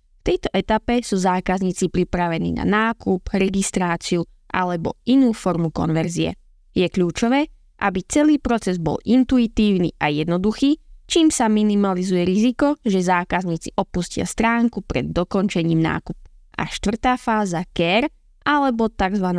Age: 20-39